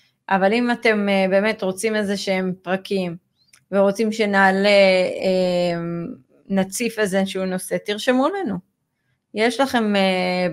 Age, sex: 30-49, female